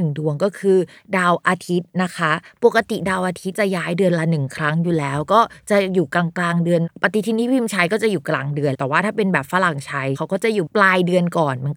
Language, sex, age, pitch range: Thai, female, 20-39, 155-200 Hz